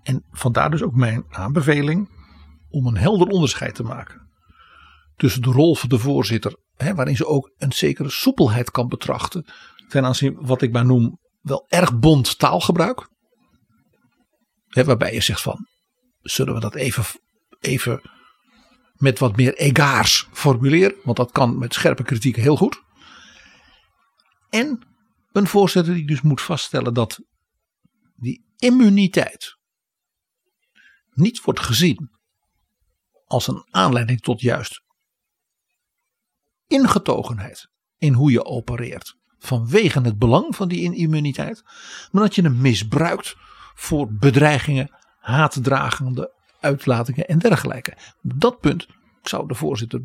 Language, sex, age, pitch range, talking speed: Dutch, male, 50-69, 125-180 Hz, 125 wpm